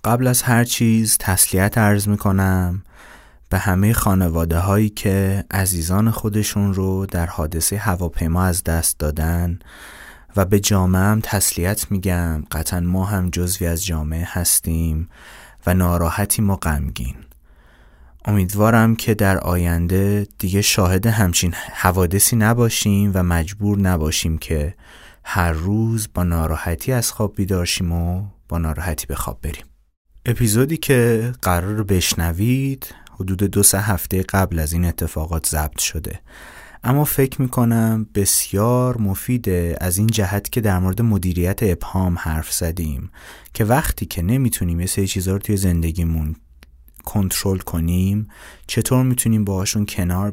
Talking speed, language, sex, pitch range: 130 wpm, Persian, male, 85-105 Hz